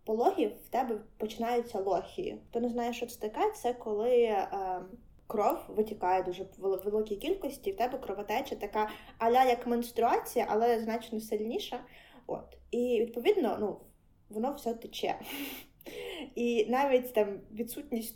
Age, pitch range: 20-39, 210-245 Hz